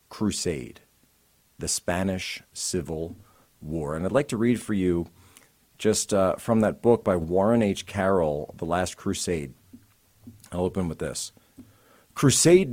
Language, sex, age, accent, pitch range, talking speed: English, male, 40-59, American, 90-115 Hz, 135 wpm